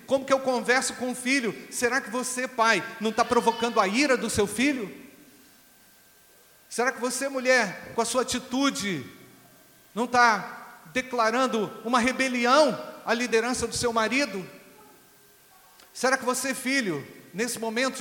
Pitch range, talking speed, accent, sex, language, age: 210-240 Hz, 145 wpm, Brazilian, male, Portuguese, 40-59